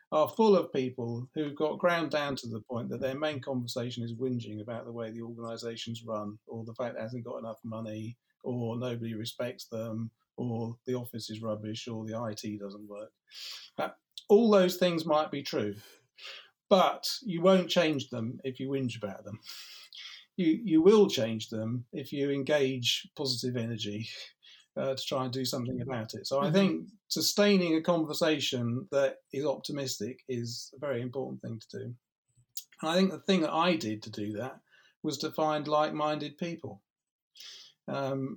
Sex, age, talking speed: male, 40-59, 175 wpm